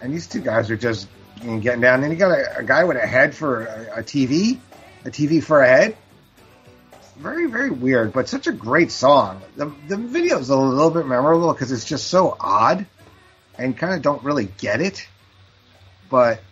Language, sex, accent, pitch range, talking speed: English, male, American, 95-130 Hz, 205 wpm